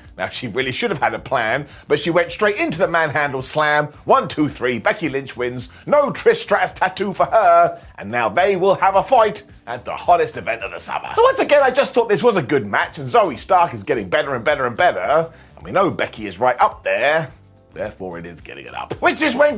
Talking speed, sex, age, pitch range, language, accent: 240 wpm, male, 30-49, 165-255 Hz, English, British